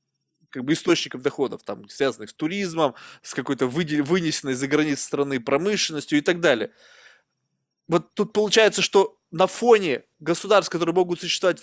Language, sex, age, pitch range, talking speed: Russian, male, 20-39, 160-215 Hz, 145 wpm